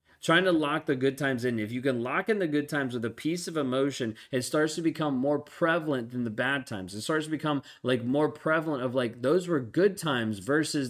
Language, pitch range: English, 115-145 Hz